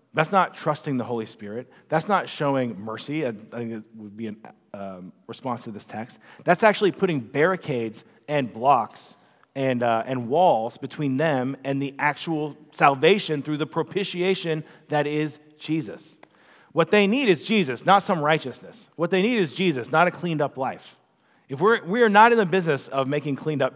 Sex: male